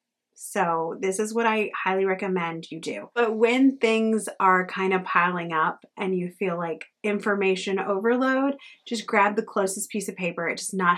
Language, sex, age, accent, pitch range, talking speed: English, female, 30-49, American, 180-225 Hz, 180 wpm